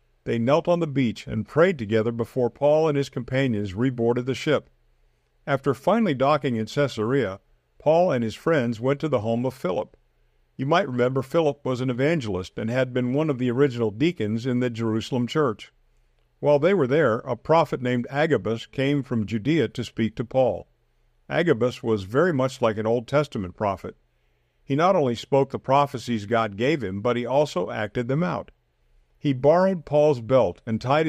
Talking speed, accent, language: 185 wpm, American, English